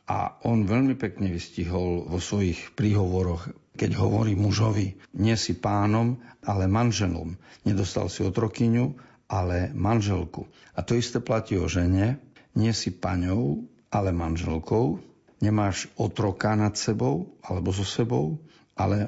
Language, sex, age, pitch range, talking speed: Slovak, male, 50-69, 95-115 Hz, 130 wpm